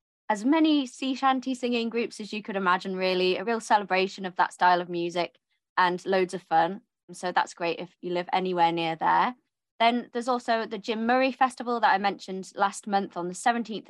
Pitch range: 180-220 Hz